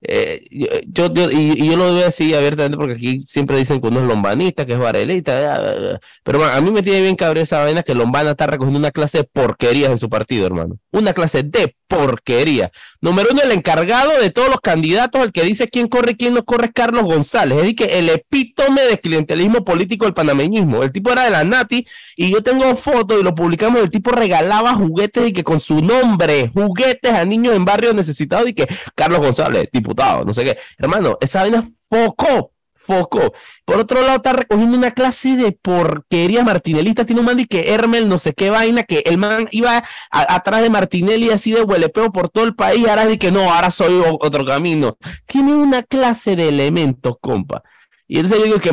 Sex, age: male, 30-49